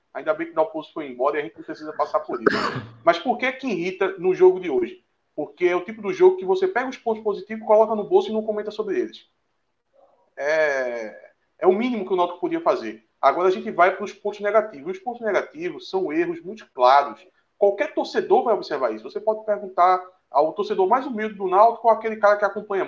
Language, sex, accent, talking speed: Portuguese, male, Brazilian, 230 wpm